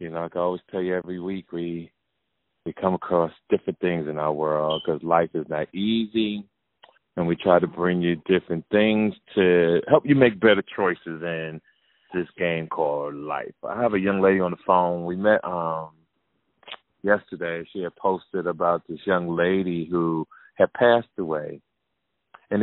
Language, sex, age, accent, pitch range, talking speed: English, male, 30-49, American, 85-100 Hz, 175 wpm